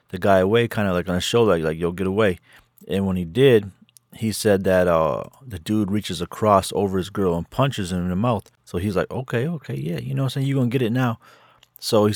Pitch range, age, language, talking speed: 95-110 Hz, 30-49, English, 250 wpm